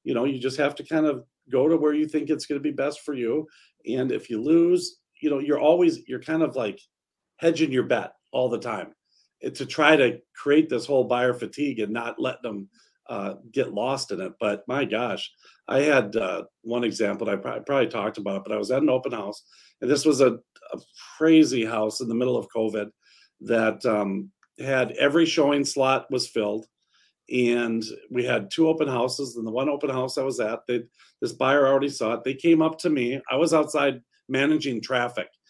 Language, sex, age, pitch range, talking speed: English, male, 50-69, 120-155 Hz, 210 wpm